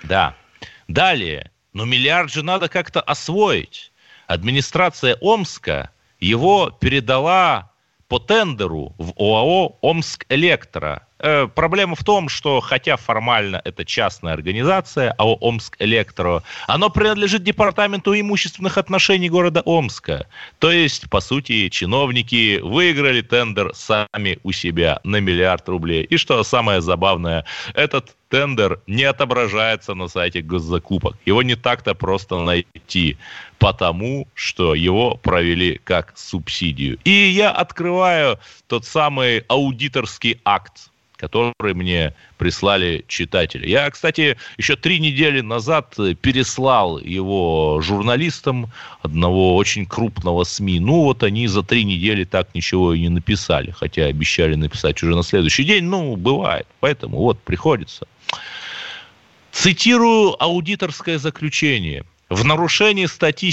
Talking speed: 120 wpm